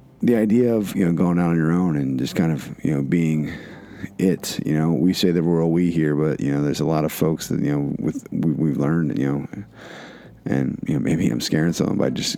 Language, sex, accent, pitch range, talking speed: English, male, American, 75-90 Hz, 255 wpm